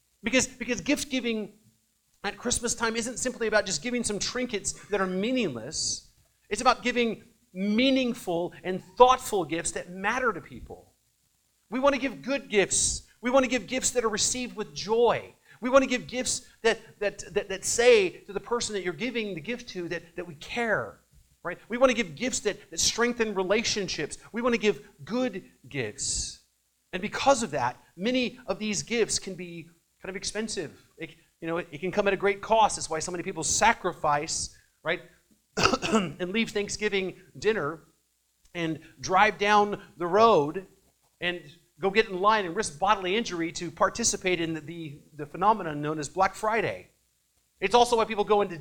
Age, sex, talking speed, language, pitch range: 40-59, male, 180 wpm, English, 170-230 Hz